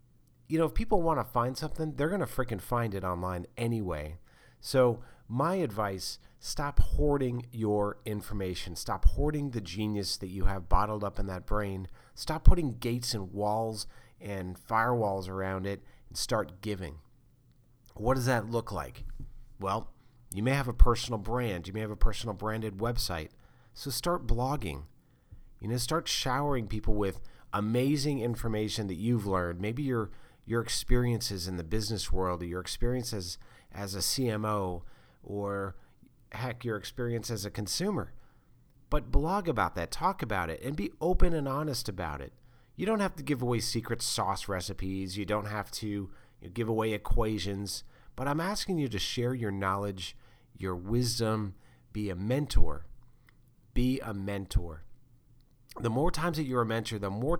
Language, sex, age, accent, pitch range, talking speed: English, male, 40-59, American, 100-125 Hz, 165 wpm